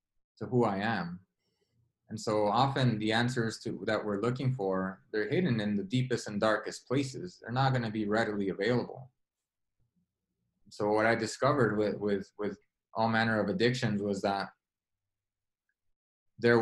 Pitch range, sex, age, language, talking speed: 100-120 Hz, male, 20-39, English, 150 wpm